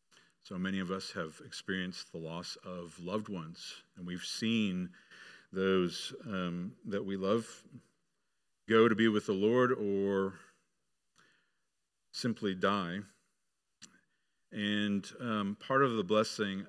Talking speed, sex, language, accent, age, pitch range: 120 wpm, male, English, American, 50-69, 95-115 Hz